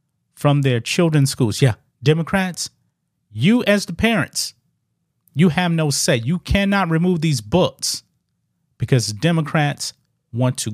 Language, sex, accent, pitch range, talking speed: English, male, American, 125-155 Hz, 130 wpm